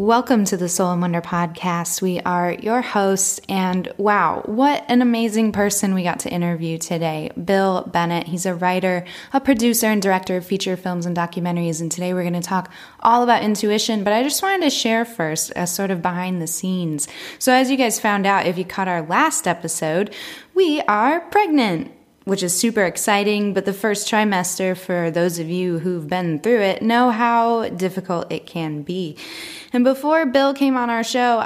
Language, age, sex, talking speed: English, 10-29, female, 195 wpm